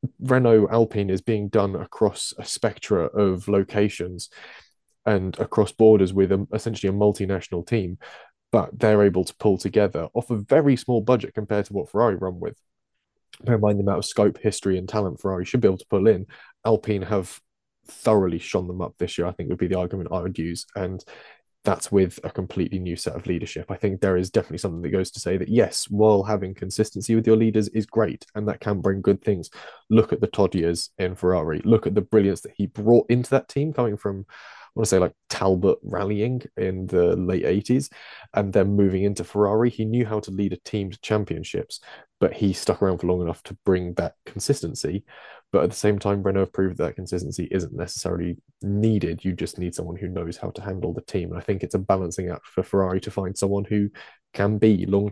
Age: 20-39